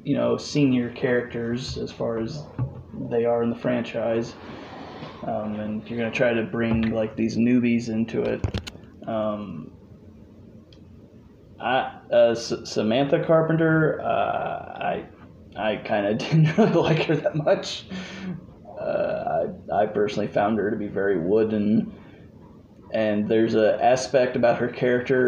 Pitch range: 110-140 Hz